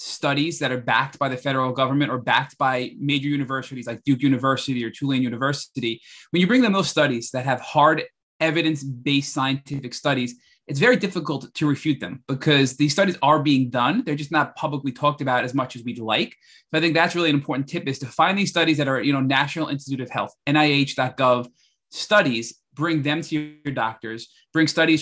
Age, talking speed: 20-39, 200 wpm